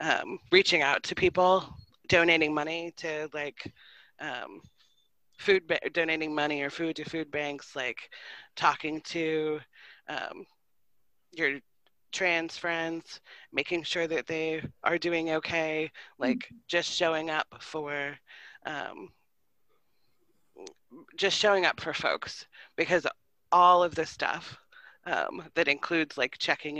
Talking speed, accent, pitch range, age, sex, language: 120 wpm, American, 145-170 Hz, 30-49, female, English